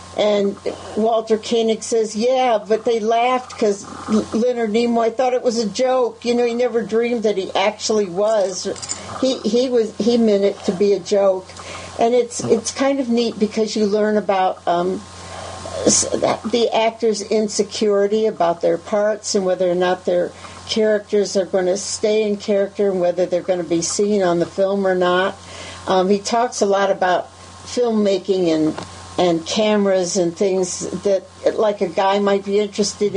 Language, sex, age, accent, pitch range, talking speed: English, female, 60-79, American, 185-220 Hz, 170 wpm